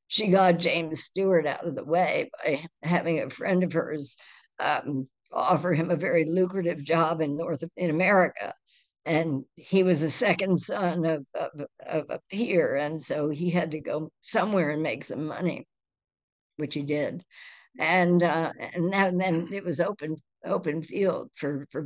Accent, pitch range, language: American, 155-180 Hz, English